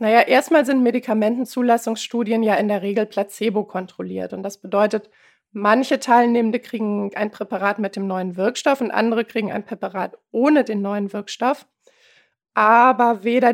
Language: German